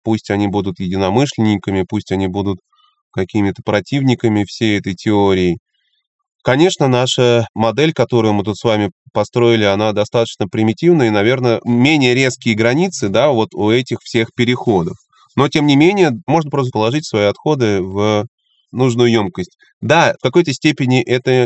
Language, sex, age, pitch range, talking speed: Russian, male, 20-39, 105-140 Hz, 145 wpm